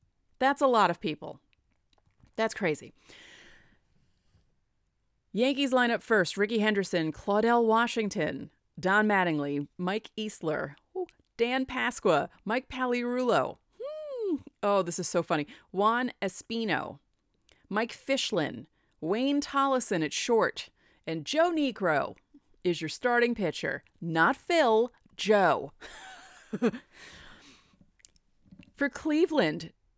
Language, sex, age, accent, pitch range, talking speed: English, female, 30-49, American, 175-250 Hz, 95 wpm